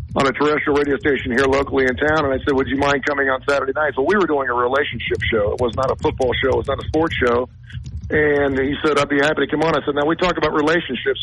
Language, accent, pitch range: English, American, 125-150 Hz